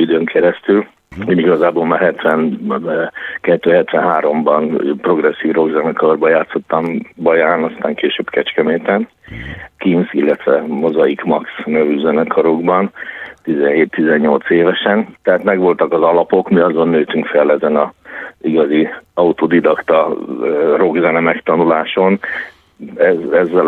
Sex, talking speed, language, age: male, 95 wpm, Hungarian, 50-69